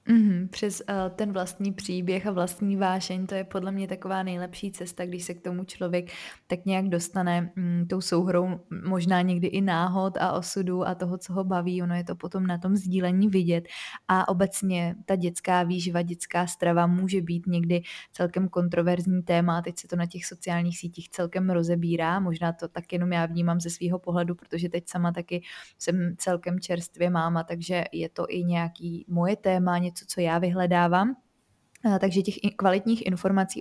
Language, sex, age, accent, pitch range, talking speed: Czech, female, 20-39, native, 175-195 Hz, 170 wpm